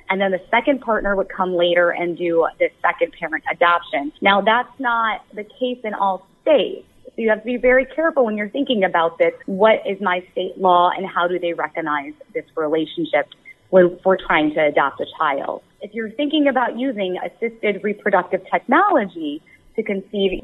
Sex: female